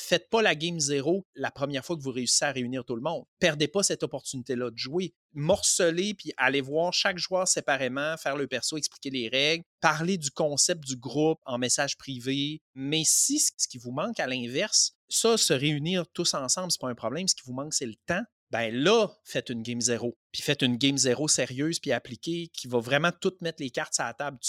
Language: French